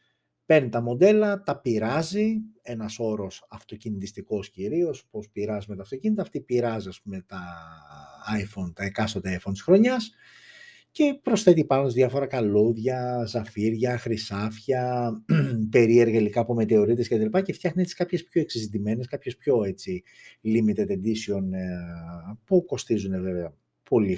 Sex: male